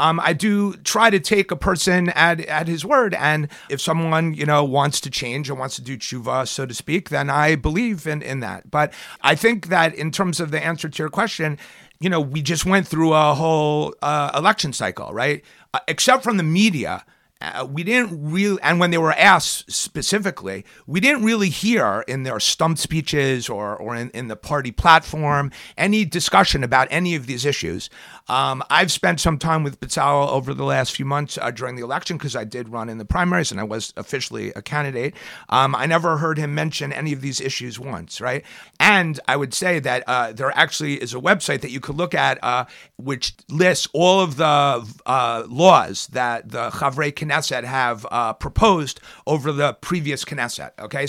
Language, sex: English, male